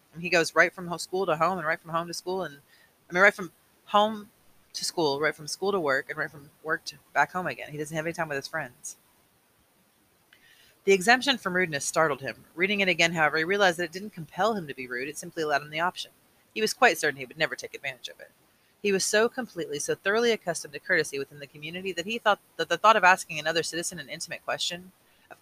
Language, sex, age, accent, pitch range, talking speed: English, female, 30-49, American, 150-190 Hz, 250 wpm